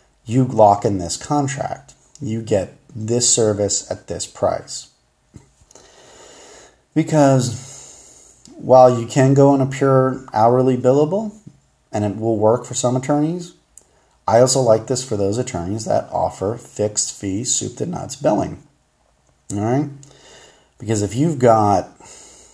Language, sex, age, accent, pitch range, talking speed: English, male, 30-49, American, 100-125 Hz, 125 wpm